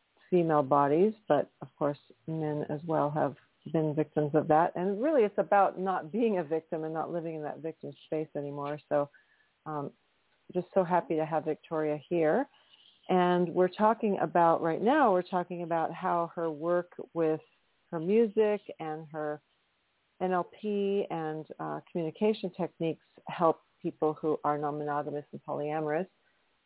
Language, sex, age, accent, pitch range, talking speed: English, female, 40-59, American, 160-195 Hz, 150 wpm